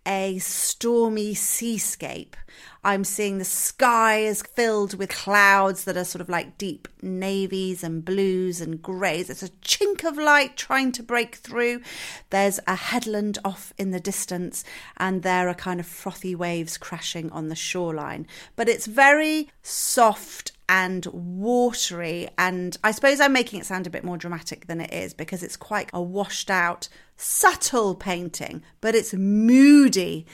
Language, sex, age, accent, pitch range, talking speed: English, female, 40-59, British, 180-230 Hz, 160 wpm